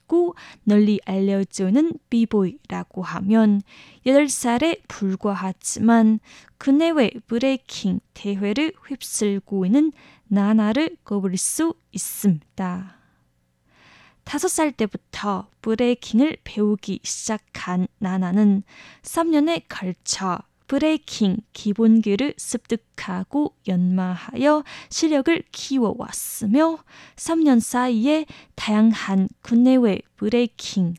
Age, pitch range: 20-39, 195-265 Hz